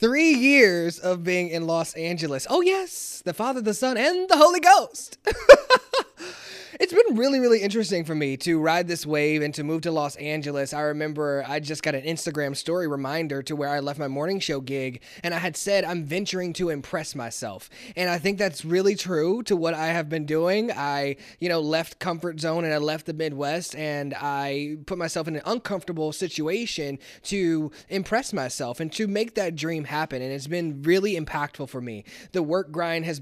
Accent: American